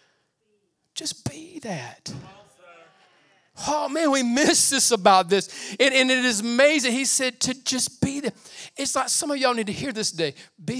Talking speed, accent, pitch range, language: 180 wpm, American, 230-315 Hz, English